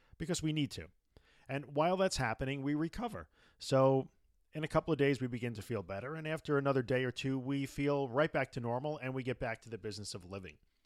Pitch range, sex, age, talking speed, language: 110-145 Hz, male, 40-59, 230 wpm, English